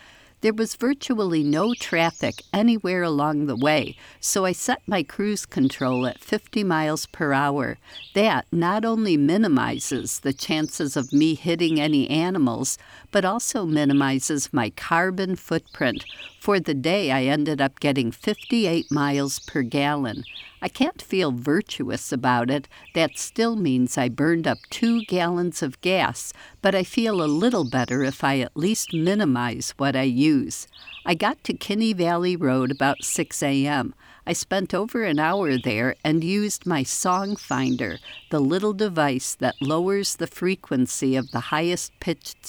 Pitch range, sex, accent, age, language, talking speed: 135-185 Hz, female, American, 60-79, English, 155 wpm